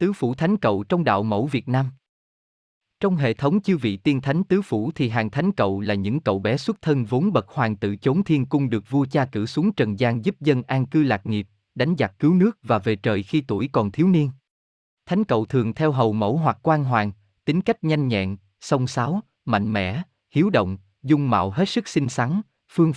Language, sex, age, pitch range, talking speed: Vietnamese, male, 20-39, 105-150 Hz, 225 wpm